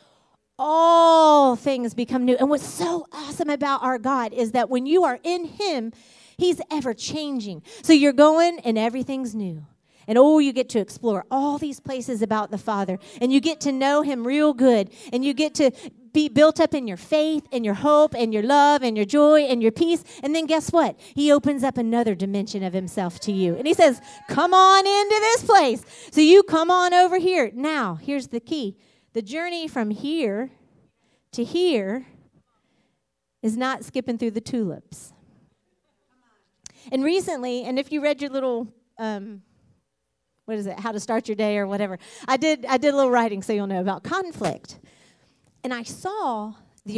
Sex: female